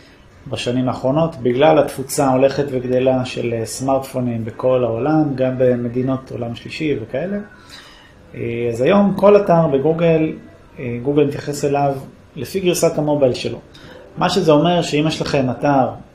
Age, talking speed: 30-49, 125 wpm